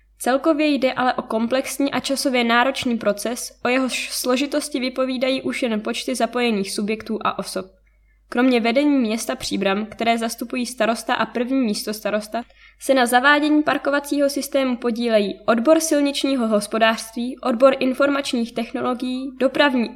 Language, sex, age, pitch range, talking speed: Czech, female, 10-29, 225-275 Hz, 130 wpm